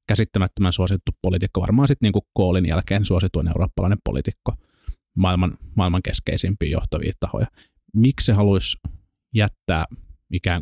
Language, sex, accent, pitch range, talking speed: Finnish, male, native, 85-100 Hz, 120 wpm